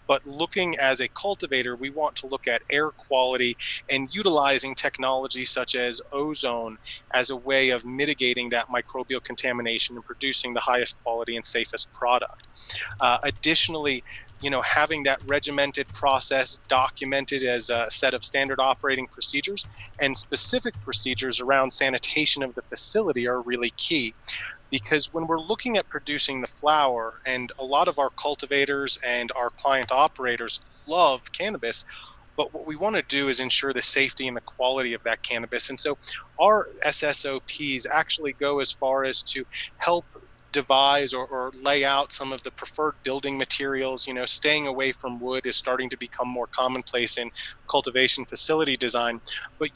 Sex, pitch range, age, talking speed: male, 125-140 Hz, 30-49, 165 wpm